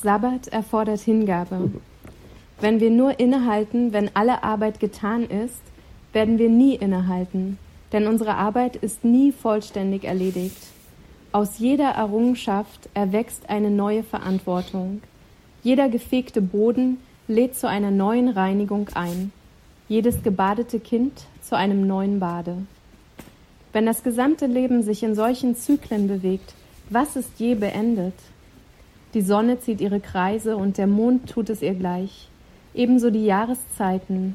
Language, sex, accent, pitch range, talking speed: English, female, German, 200-240 Hz, 130 wpm